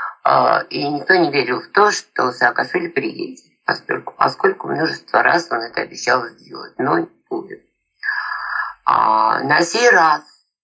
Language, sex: Russian, female